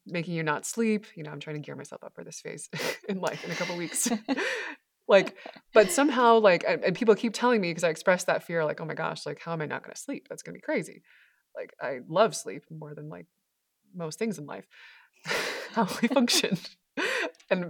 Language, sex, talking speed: English, female, 225 wpm